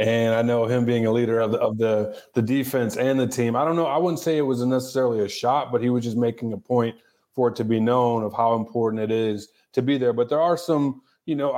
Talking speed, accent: 275 wpm, American